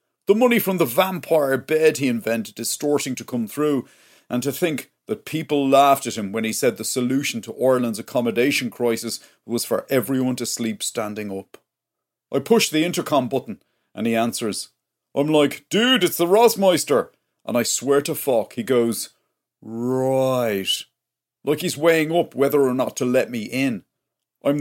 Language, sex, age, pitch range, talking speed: English, male, 40-59, 125-175 Hz, 170 wpm